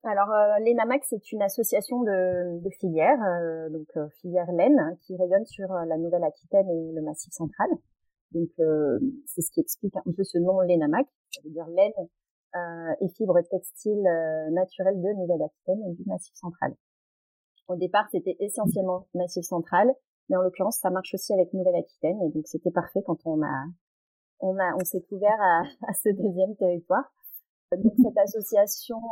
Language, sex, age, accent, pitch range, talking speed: French, female, 30-49, French, 170-205 Hz, 175 wpm